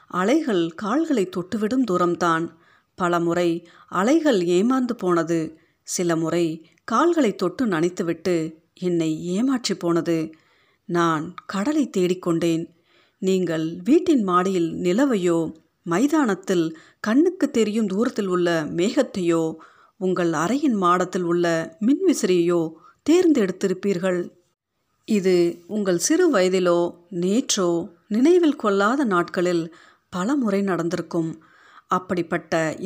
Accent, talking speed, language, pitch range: native, 90 wpm, Tamil, 170-210 Hz